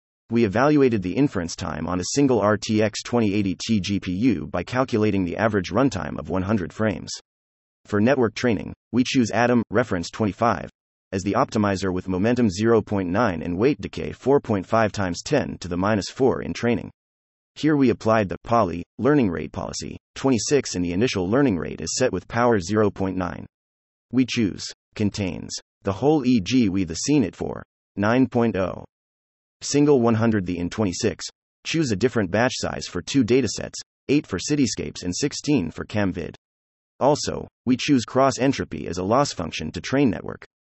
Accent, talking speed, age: American, 160 wpm, 30-49